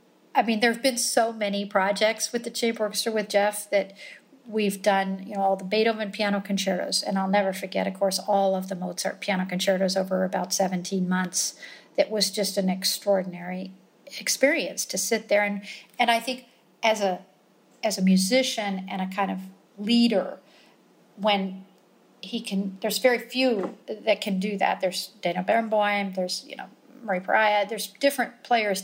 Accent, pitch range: American, 190-225 Hz